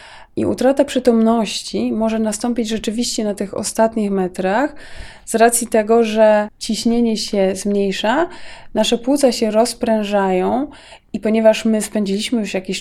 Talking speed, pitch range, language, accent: 125 wpm, 195-235 Hz, Polish, native